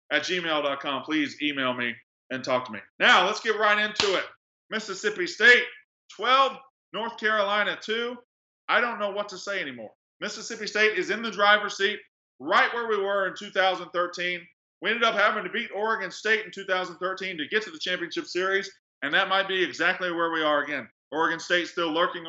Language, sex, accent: English, male, American